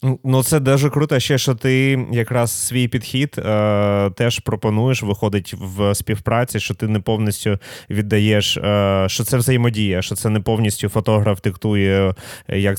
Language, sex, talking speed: Ukrainian, male, 150 wpm